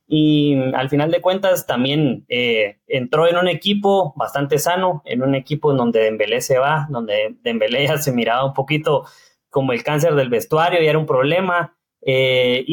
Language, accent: English, Mexican